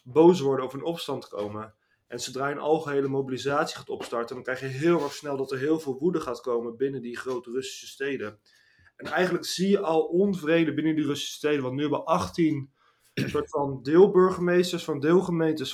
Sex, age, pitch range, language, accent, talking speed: male, 20-39, 130-155 Hz, Dutch, Dutch, 200 wpm